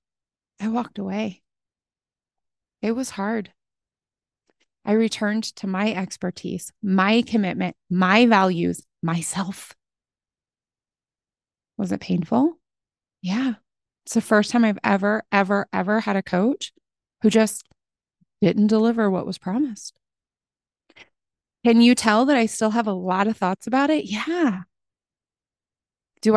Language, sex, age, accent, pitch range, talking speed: English, female, 20-39, American, 195-245 Hz, 120 wpm